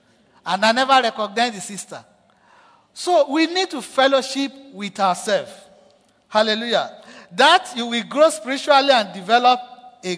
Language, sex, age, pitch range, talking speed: English, male, 50-69, 195-265 Hz, 130 wpm